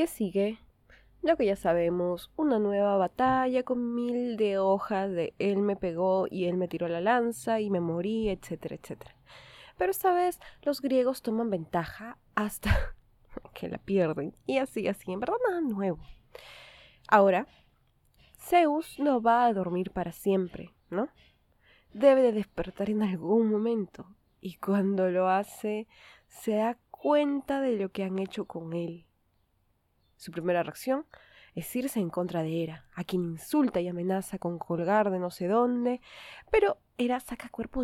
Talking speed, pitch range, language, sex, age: 155 wpm, 180-245 Hz, Spanish, female, 20-39